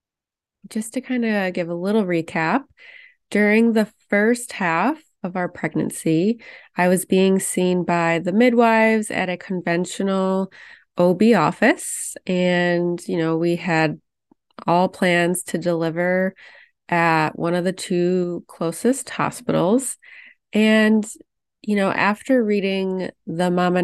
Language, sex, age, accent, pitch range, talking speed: English, female, 20-39, American, 170-220 Hz, 125 wpm